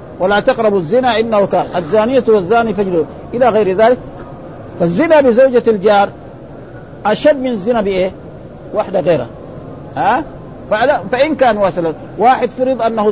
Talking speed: 120 wpm